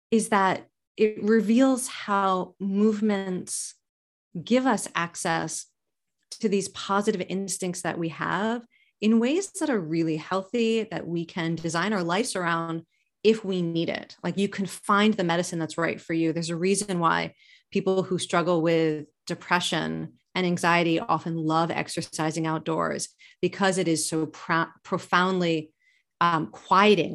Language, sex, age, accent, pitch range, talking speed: English, female, 30-49, American, 165-200 Hz, 145 wpm